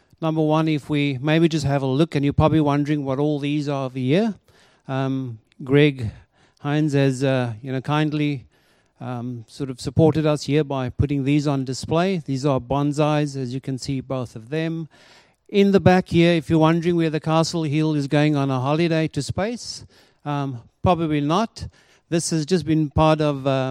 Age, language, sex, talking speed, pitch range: 50-69, English, male, 190 wpm, 135-160 Hz